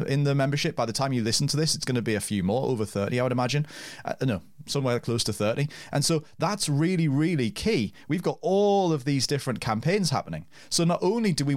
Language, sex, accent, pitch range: English, male, British, 110-150 Hz